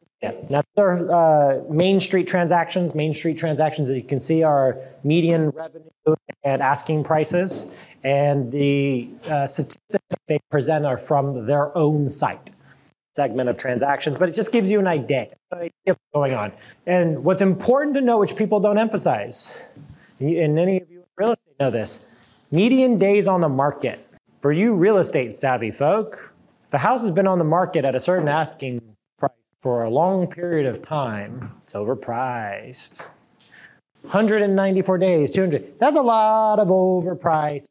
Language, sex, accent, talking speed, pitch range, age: English, male, American, 165 wpm, 140-185 Hz, 30-49